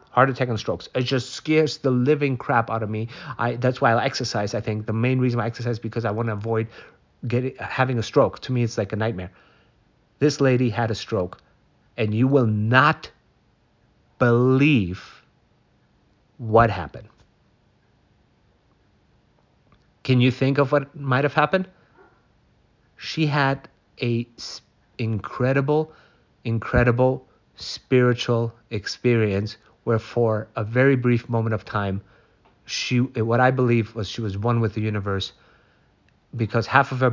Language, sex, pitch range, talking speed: English, male, 105-125 Hz, 145 wpm